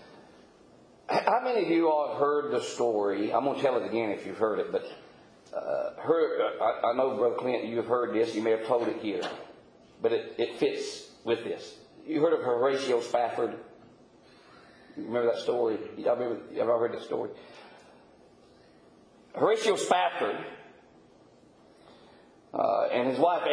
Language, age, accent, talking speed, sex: English, 40-59, American, 170 wpm, male